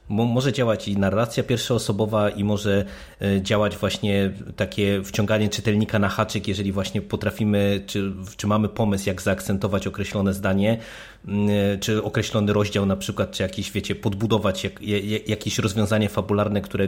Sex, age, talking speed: male, 20-39, 145 wpm